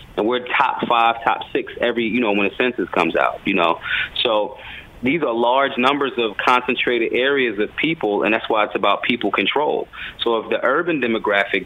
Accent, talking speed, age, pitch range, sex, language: American, 195 wpm, 30-49, 115-145 Hz, male, English